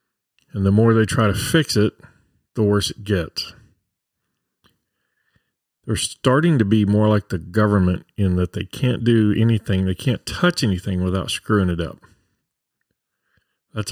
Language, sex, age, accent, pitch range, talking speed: English, male, 40-59, American, 95-120 Hz, 150 wpm